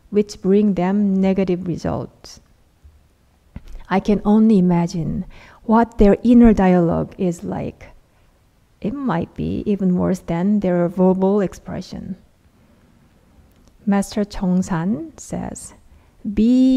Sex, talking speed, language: female, 105 wpm, English